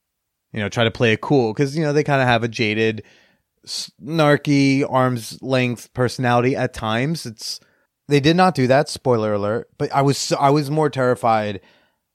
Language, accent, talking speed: English, American, 185 wpm